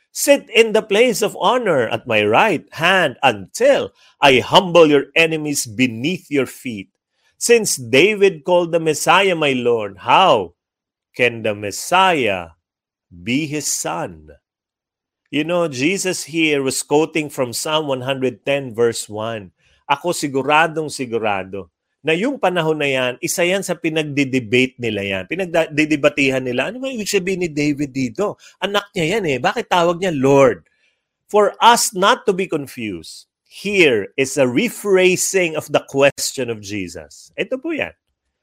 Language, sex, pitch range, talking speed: English, male, 125-180 Hz, 140 wpm